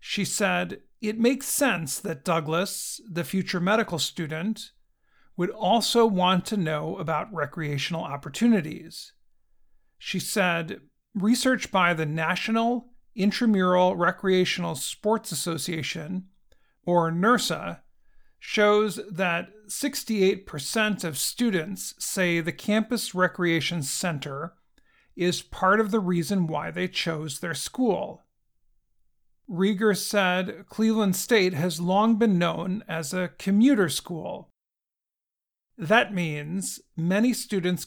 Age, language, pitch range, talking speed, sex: 50-69, English, 165-210 Hz, 105 wpm, male